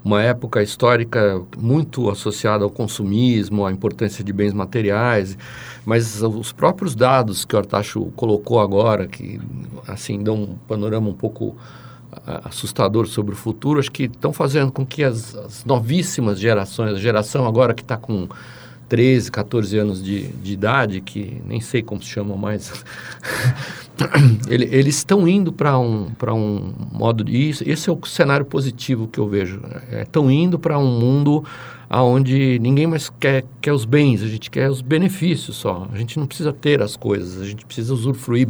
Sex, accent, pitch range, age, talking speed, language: male, Brazilian, 105-135 Hz, 50-69, 170 wpm, Portuguese